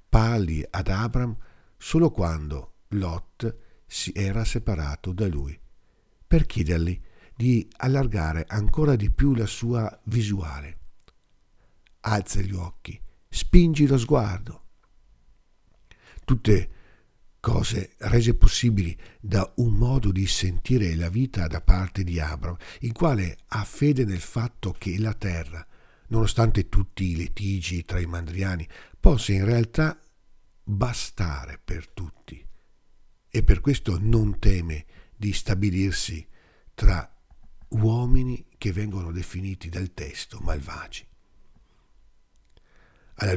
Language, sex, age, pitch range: Italian, male, 50-69, 90-115 Hz